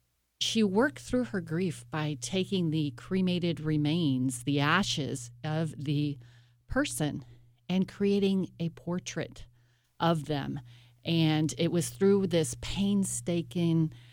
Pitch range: 130-170 Hz